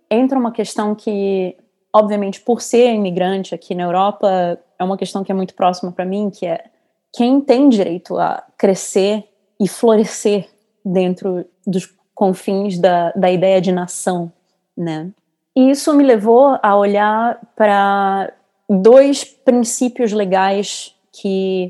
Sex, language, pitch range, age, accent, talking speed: female, English, 180-215 Hz, 20-39, Brazilian, 135 wpm